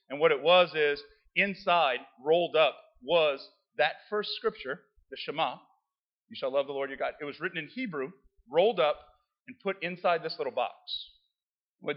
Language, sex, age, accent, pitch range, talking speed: English, male, 40-59, American, 155-210 Hz, 175 wpm